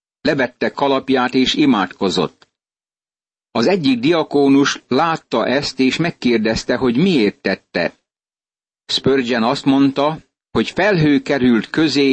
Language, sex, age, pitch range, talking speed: Hungarian, male, 60-79, 120-145 Hz, 105 wpm